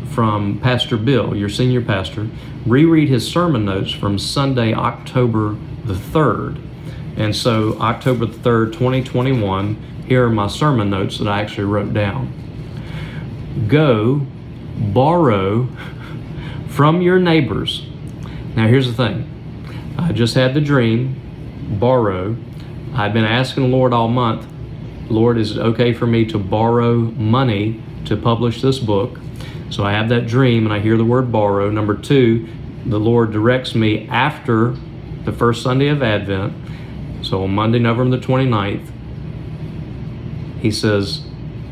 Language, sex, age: English, male, 40-59